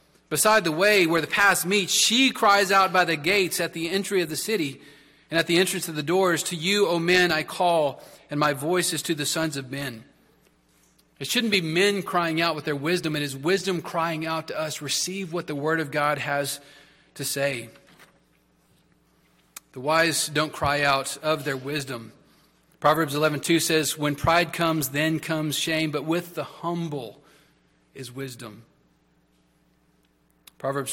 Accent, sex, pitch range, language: American, male, 140-170 Hz, English